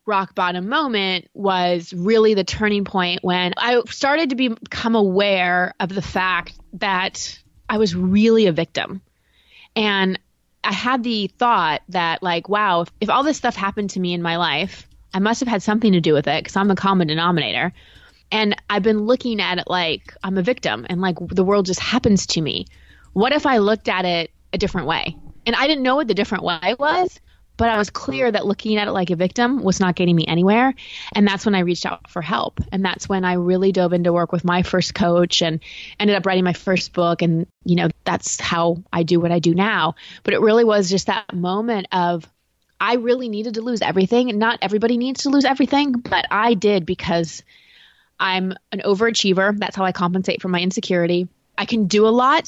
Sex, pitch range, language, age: female, 180-220 Hz, English, 20-39